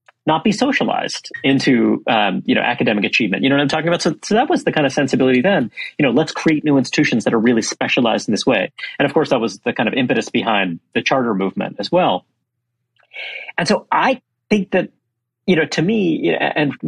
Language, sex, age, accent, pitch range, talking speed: English, male, 30-49, American, 130-175 Hz, 220 wpm